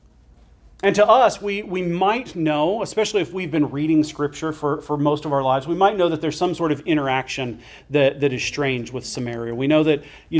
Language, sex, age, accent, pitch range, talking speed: English, male, 40-59, American, 145-180 Hz, 220 wpm